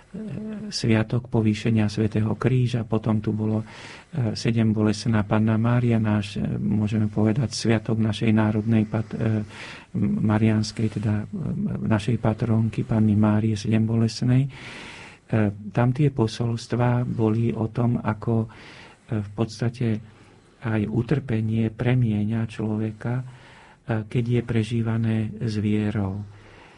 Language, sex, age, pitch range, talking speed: Slovak, male, 50-69, 110-115 Hz, 100 wpm